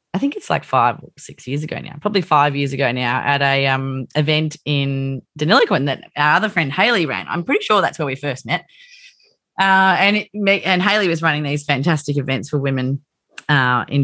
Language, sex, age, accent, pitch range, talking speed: English, female, 20-39, Australian, 150-195 Hz, 215 wpm